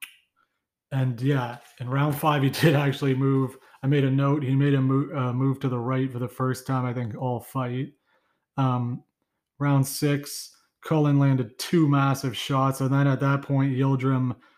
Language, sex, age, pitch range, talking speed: English, male, 30-49, 130-140 Hz, 180 wpm